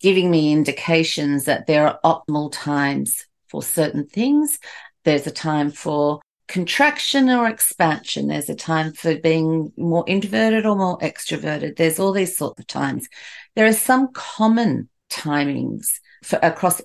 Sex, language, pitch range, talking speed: female, English, 150-195 Hz, 145 wpm